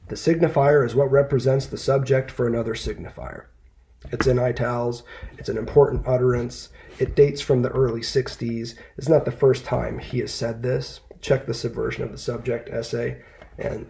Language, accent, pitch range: English, American, 120-145 Hz